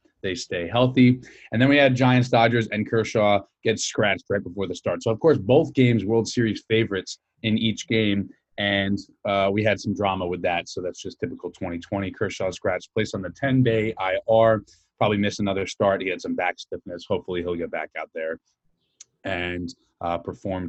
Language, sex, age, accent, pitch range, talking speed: English, male, 30-49, American, 100-125 Hz, 190 wpm